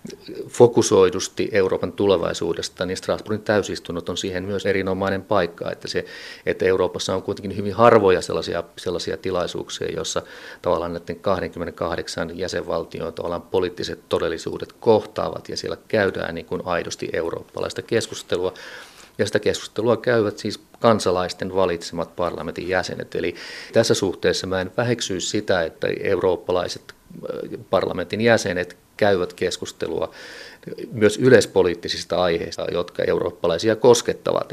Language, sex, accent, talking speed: Finnish, male, native, 115 wpm